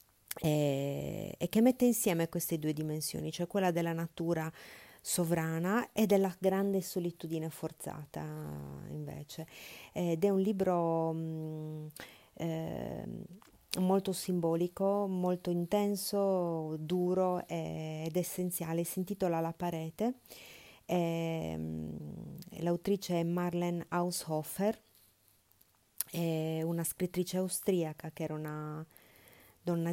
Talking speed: 105 wpm